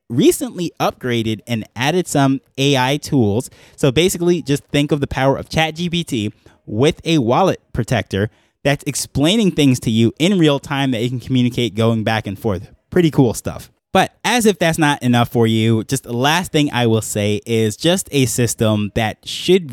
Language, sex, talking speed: English, male, 185 wpm